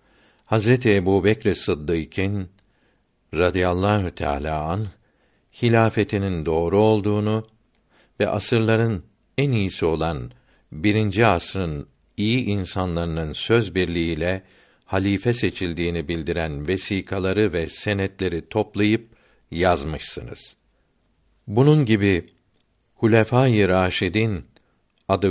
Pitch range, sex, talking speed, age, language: 85-110 Hz, male, 80 wpm, 60-79, Turkish